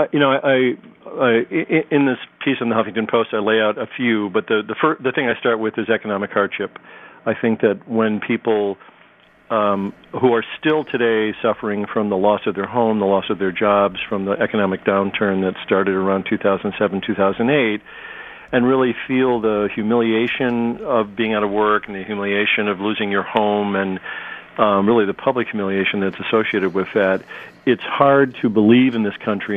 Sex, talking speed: male, 195 wpm